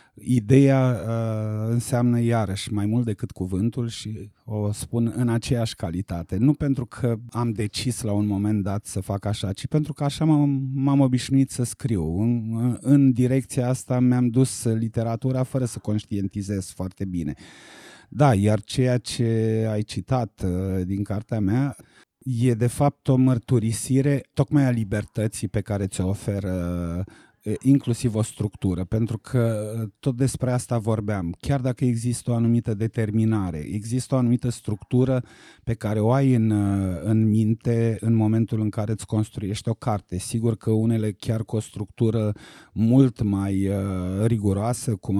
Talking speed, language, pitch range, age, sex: 145 wpm, Romanian, 105-125 Hz, 30-49, male